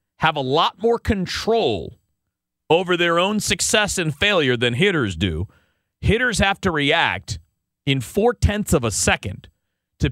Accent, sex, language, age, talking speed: American, male, English, 40-59, 140 wpm